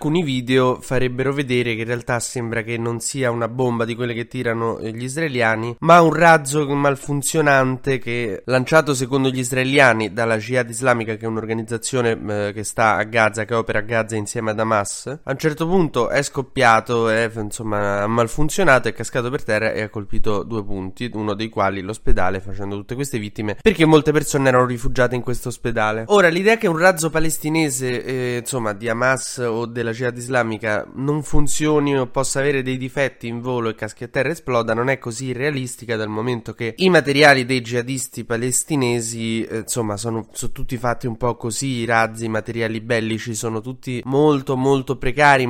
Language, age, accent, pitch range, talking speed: Italian, 20-39, native, 115-135 Hz, 185 wpm